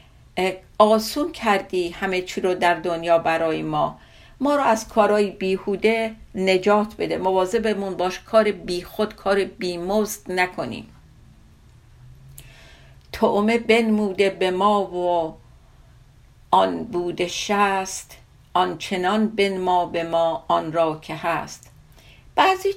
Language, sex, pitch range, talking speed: Persian, female, 180-220 Hz, 105 wpm